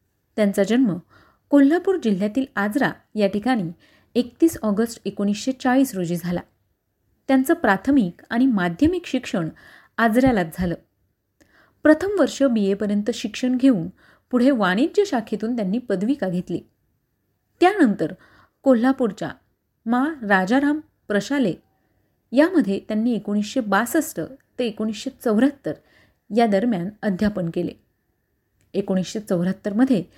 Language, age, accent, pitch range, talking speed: Marathi, 30-49, native, 200-270 Hz, 95 wpm